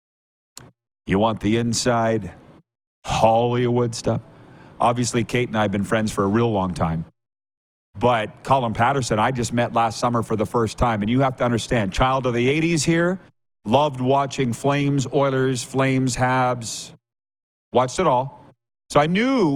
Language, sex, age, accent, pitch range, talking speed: English, male, 40-59, American, 115-155 Hz, 160 wpm